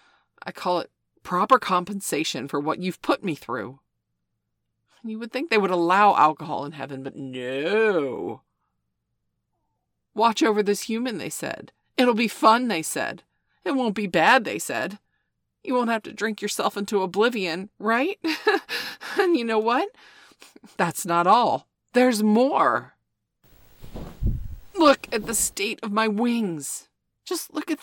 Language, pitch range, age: English, 195-275 Hz, 40-59